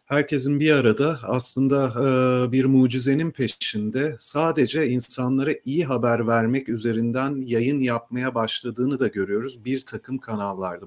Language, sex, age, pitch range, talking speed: Turkish, male, 40-59, 115-145 Hz, 115 wpm